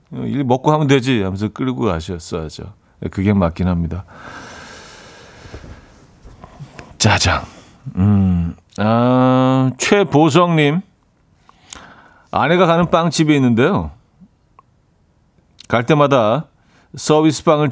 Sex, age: male, 40-59